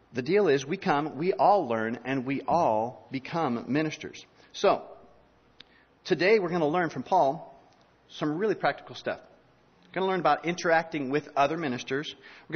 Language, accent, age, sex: English, American, 40-59, male